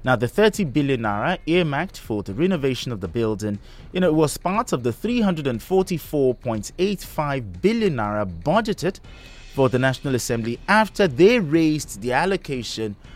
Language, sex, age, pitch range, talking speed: English, male, 30-49, 110-160 Hz, 140 wpm